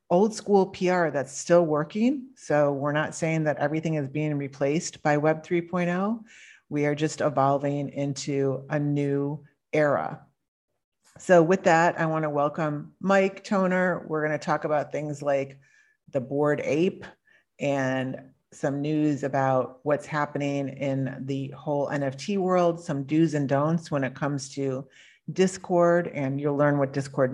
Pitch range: 140-160 Hz